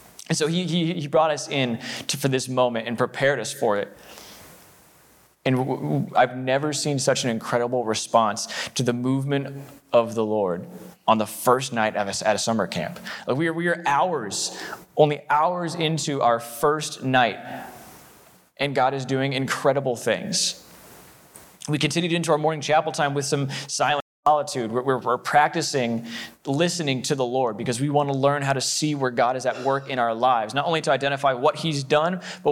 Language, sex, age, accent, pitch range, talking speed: English, male, 20-39, American, 130-165 Hz, 190 wpm